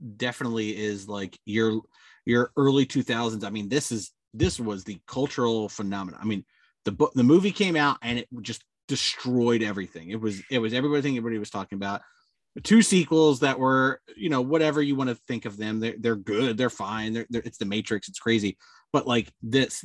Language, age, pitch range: English, 30-49, 110-140 Hz